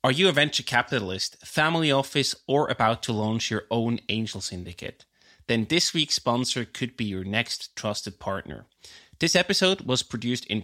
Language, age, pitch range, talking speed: English, 20-39, 110-140 Hz, 170 wpm